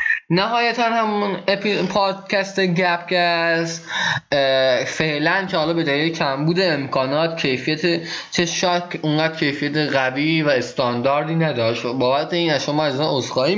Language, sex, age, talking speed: Persian, male, 20-39, 120 wpm